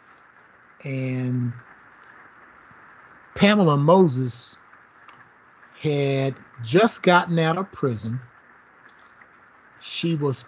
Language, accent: English, American